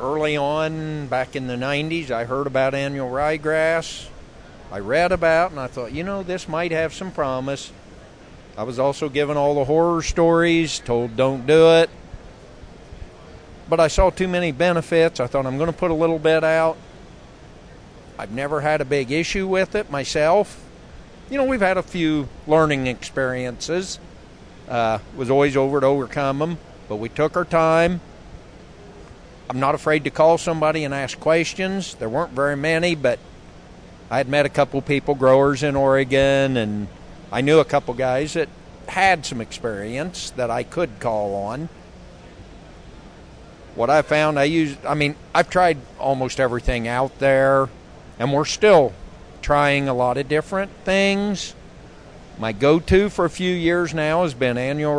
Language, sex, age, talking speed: English, male, 50-69, 165 wpm